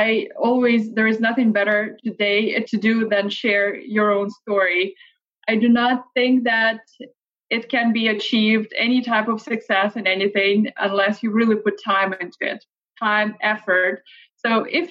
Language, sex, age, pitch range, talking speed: English, female, 20-39, 210-245 Hz, 160 wpm